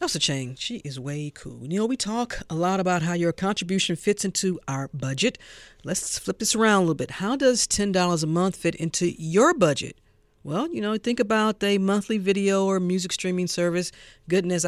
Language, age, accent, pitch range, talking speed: English, 50-69, American, 155-200 Hz, 200 wpm